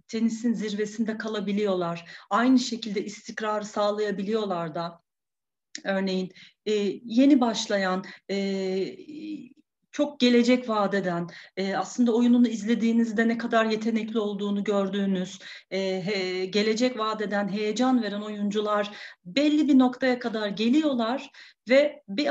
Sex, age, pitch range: female, 40-59, 200-255 Hz